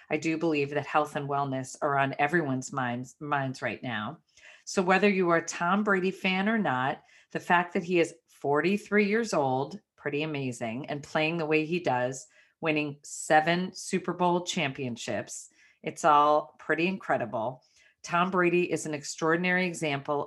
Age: 40-59